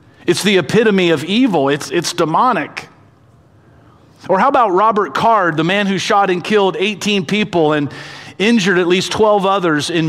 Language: English